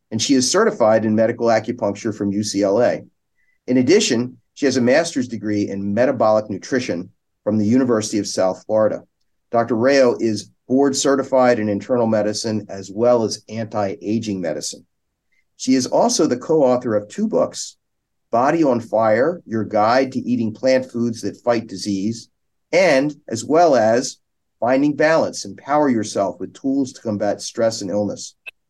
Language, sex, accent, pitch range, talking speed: English, male, American, 105-130 Hz, 155 wpm